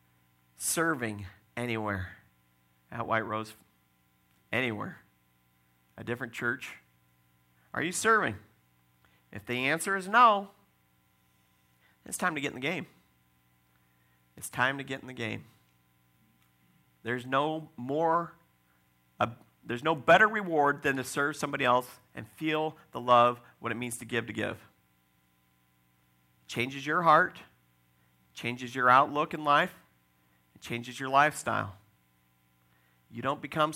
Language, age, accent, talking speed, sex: English, 40-59, American, 125 wpm, male